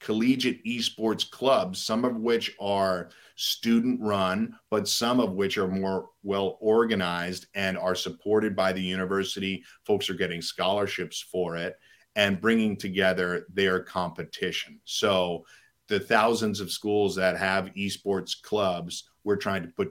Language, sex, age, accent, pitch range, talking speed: English, male, 50-69, American, 90-110 Hz, 140 wpm